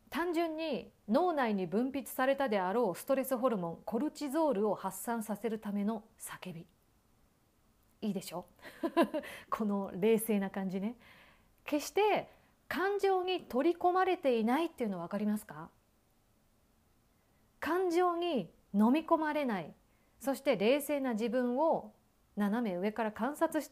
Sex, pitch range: female, 200-305 Hz